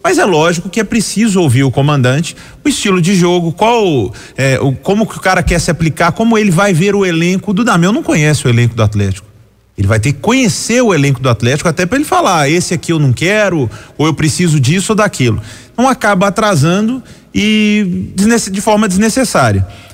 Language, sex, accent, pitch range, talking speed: Portuguese, male, Brazilian, 125-195 Hz, 210 wpm